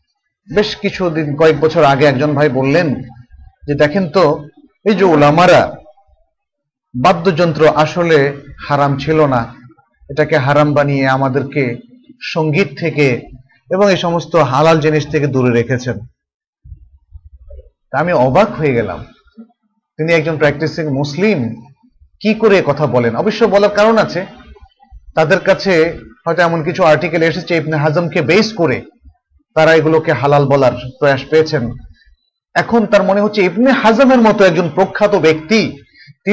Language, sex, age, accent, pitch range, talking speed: Bengali, male, 30-49, native, 140-195 Hz, 100 wpm